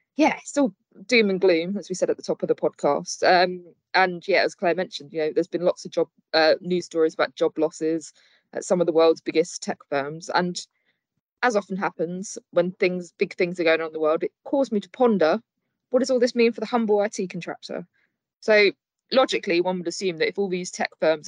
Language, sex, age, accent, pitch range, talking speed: English, female, 20-39, British, 160-200 Hz, 230 wpm